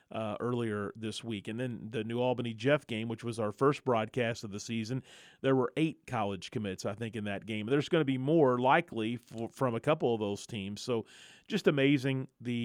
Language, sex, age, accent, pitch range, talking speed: English, male, 40-59, American, 110-135 Hz, 215 wpm